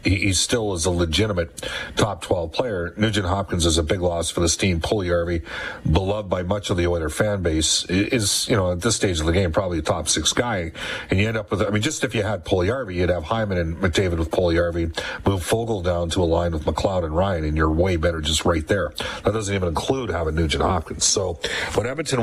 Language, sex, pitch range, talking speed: English, male, 85-100 Hz, 225 wpm